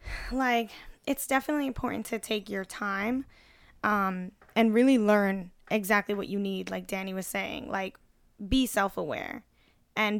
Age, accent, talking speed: 10-29, American, 140 wpm